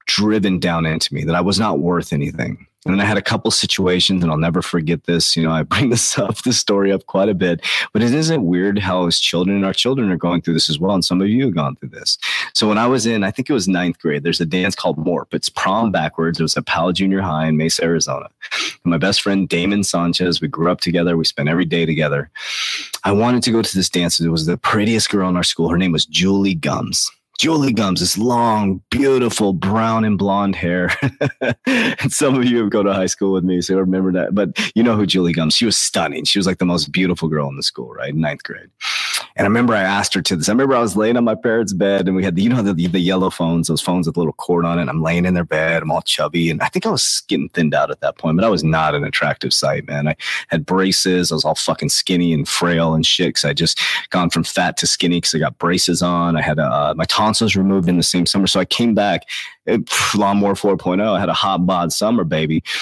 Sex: male